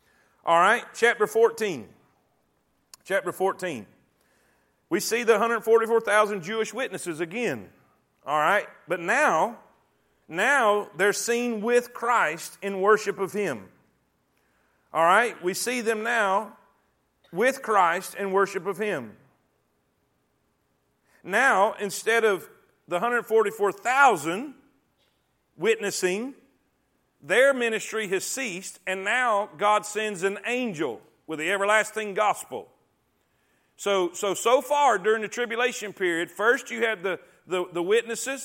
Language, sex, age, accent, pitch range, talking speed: English, male, 40-59, American, 195-235 Hz, 115 wpm